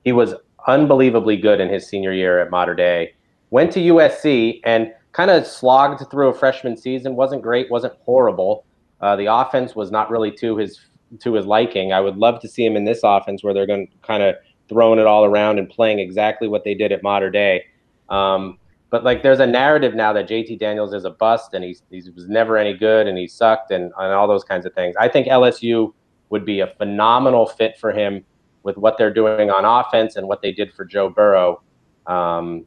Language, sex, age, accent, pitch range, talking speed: English, male, 30-49, American, 95-120 Hz, 215 wpm